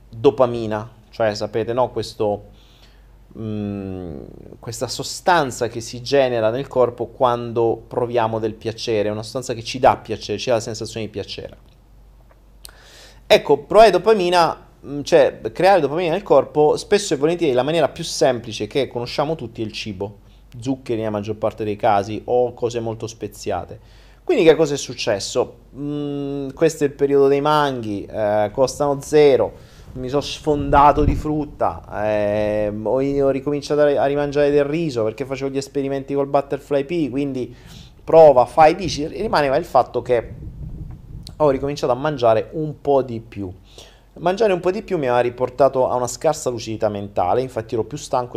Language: Italian